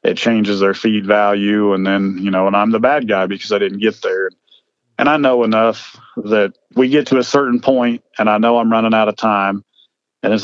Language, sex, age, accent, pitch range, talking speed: English, male, 40-59, American, 100-120 Hz, 230 wpm